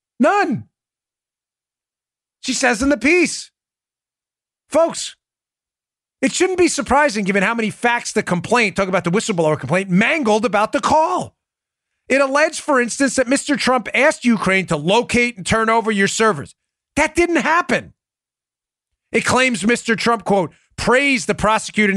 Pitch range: 200-275 Hz